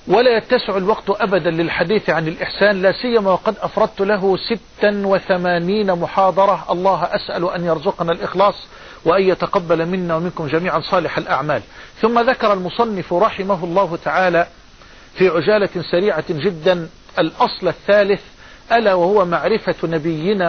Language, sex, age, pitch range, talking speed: Arabic, male, 50-69, 175-210 Hz, 125 wpm